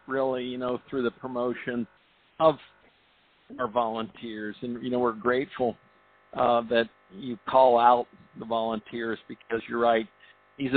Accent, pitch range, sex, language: American, 110-125 Hz, male, English